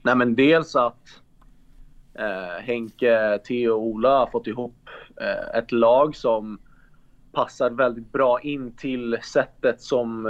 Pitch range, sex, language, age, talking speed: 115-135 Hz, male, Swedish, 30-49, 135 wpm